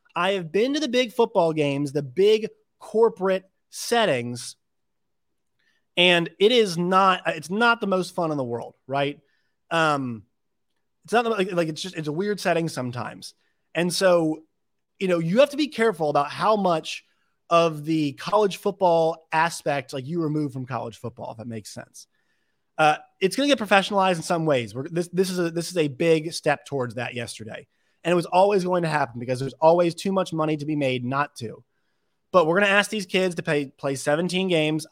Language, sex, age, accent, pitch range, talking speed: English, male, 30-49, American, 140-190 Hz, 200 wpm